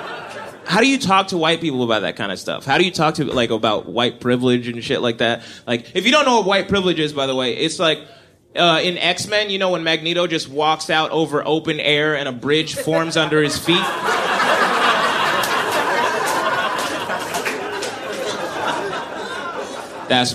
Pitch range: 120-160 Hz